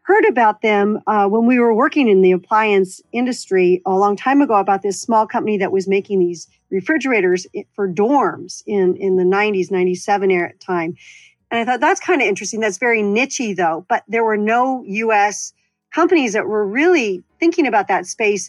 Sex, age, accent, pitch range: female, 40-59, American, 190-240 Hz